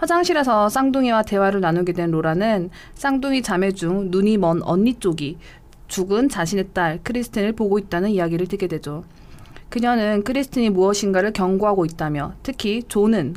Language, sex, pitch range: Korean, female, 170-230 Hz